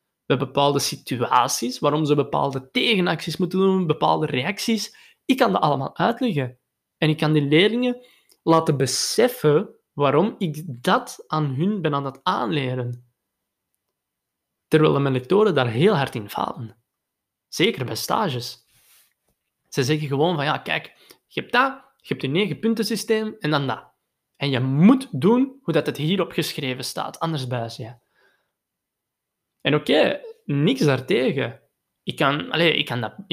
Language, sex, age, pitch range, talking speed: Dutch, male, 20-39, 135-200 Hz, 150 wpm